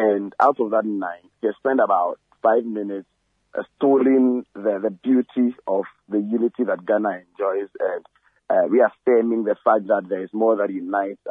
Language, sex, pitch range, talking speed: English, male, 105-135 Hz, 180 wpm